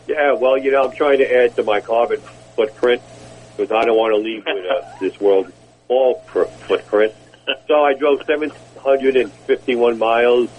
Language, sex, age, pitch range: English, male, 50-69, 105-145 Hz